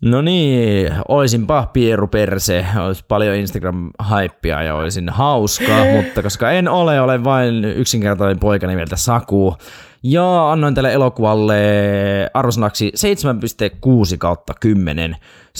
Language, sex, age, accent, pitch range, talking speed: Finnish, male, 20-39, native, 100-130 Hz, 105 wpm